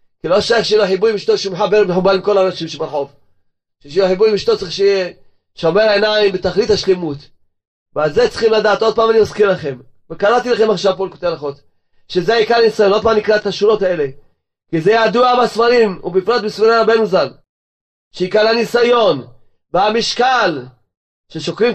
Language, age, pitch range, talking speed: Hebrew, 30-49, 165-240 Hz, 170 wpm